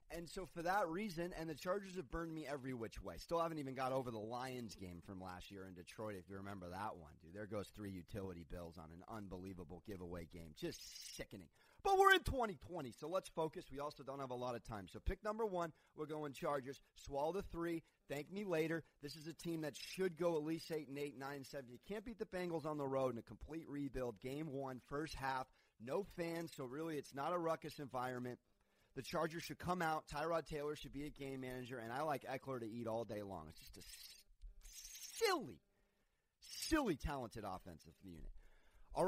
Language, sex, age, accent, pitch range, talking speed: English, male, 30-49, American, 105-160 Hz, 220 wpm